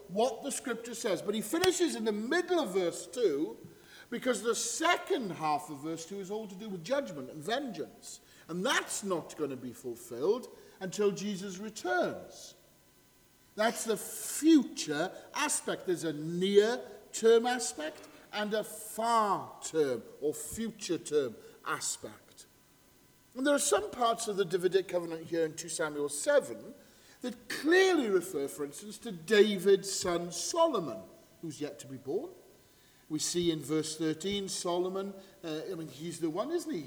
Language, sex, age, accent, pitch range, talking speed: English, male, 50-69, British, 165-275 Hz, 155 wpm